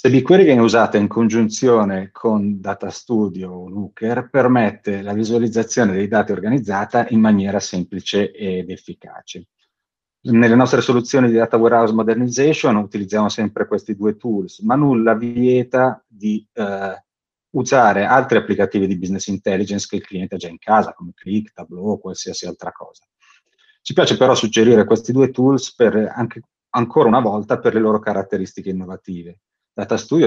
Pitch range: 100-120 Hz